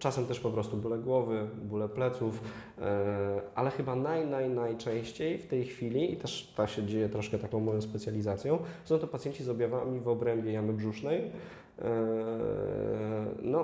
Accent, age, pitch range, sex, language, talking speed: native, 20-39, 110-130 Hz, male, Polish, 155 wpm